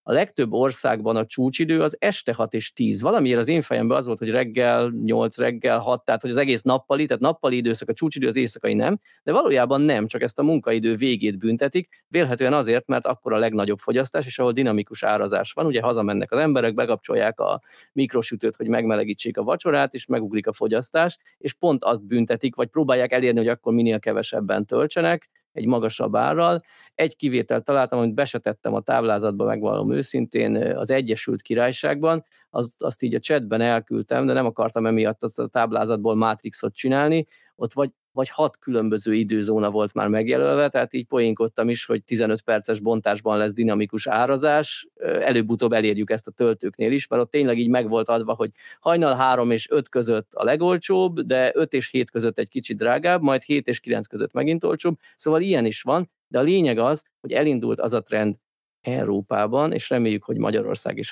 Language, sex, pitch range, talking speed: Hungarian, male, 115-145 Hz, 185 wpm